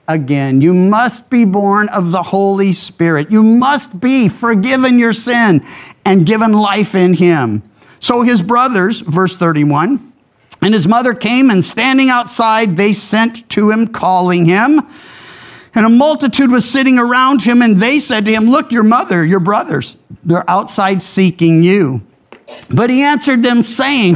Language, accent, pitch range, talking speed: English, American, 175-245 Hz, 160 wpm